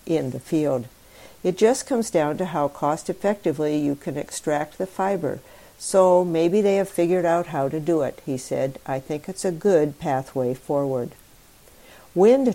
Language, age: English, 60-79